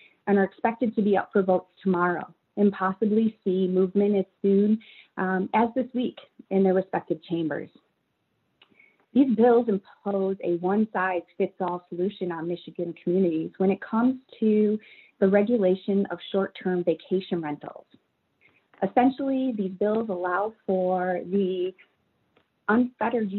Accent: American